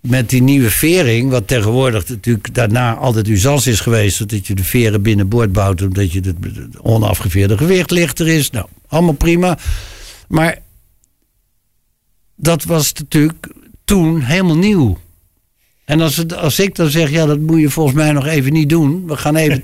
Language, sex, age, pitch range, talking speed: Dutch, male, 60-79, 105-145 Hz, 165 wpm